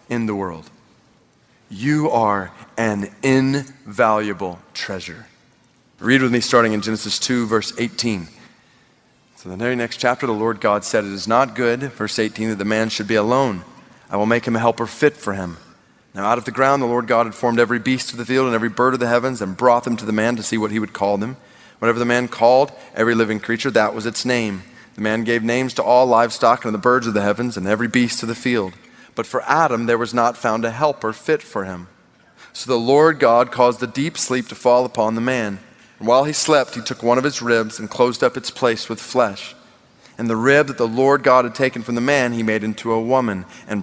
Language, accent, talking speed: English, American, 235 wpm